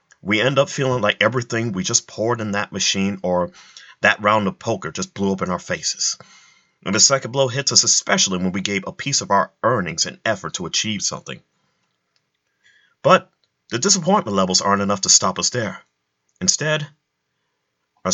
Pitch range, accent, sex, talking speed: 95-135 Hz, American, male, 180 wpm